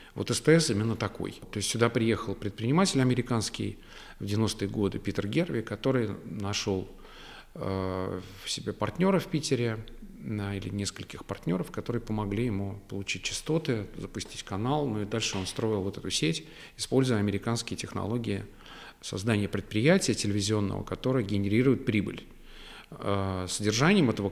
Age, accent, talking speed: 40-59, native, 130 wpm